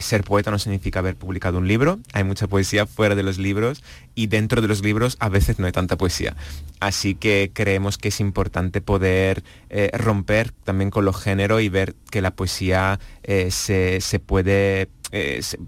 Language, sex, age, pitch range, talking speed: Spanish, male, 30-49, 95-105 Hz, 175 wpm